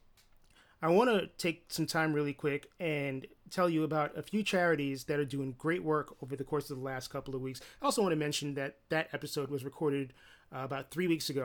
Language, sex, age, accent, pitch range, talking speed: English, male, 30-49, American, 140-160 Hz, 230 wpm